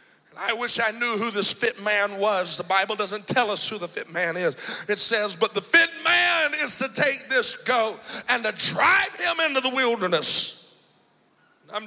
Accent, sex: American, male